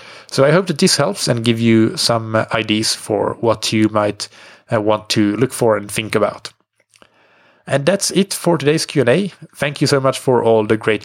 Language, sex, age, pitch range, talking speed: English, male, 30-49, 110-135 Hz, 205 wpm